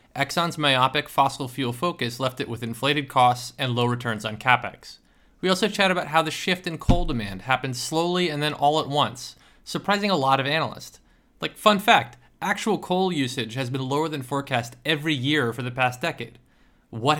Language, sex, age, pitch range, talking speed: English, male, 20-39, 125-165 Hz, 190 wpm